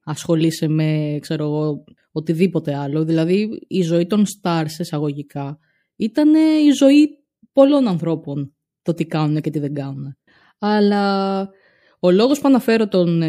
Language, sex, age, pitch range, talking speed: Greek, female, 20-39, 160-220 Hz, 135 wpm